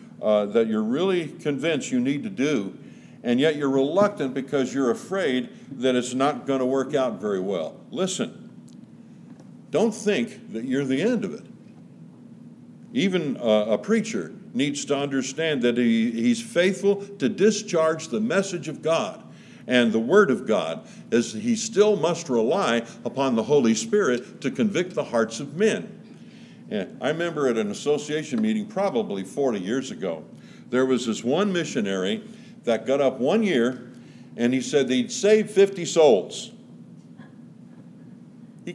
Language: English